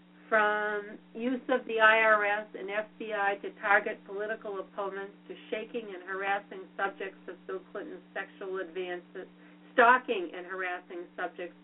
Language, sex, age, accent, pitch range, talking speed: English, female, 50-69, American, 180-220 Hz, 130 wpm